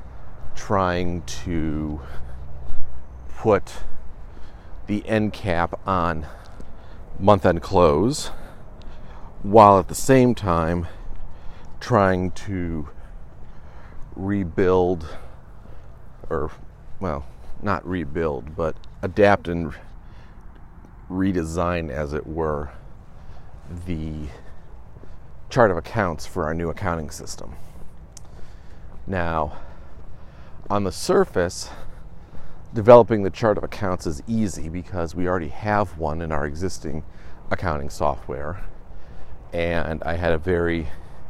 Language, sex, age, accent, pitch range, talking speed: English, male, 40-59, American, 80-95 Hz, 95 wpm